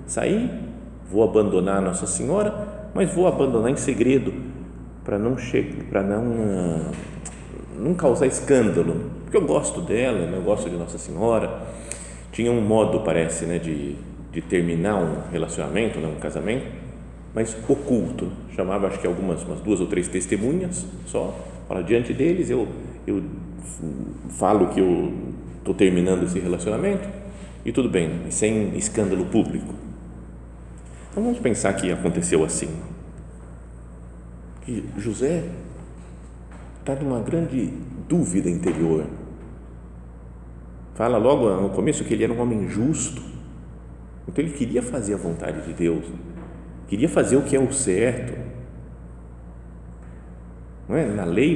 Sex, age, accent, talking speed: male, 40-59, Brazilian, 130 wpm